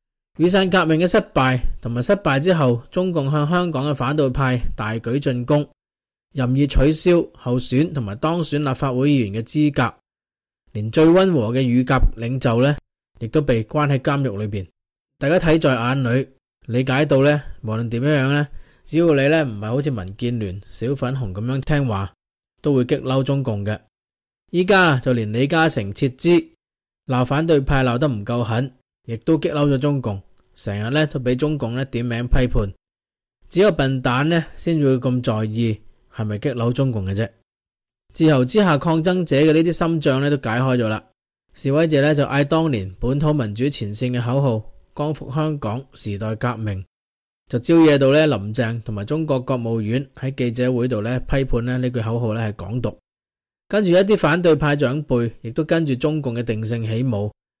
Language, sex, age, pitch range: English, male, 20-39, 115-150 Hz